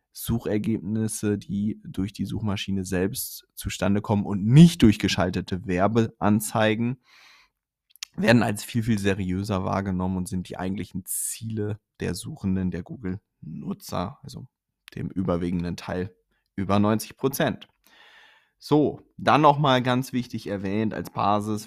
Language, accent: German, German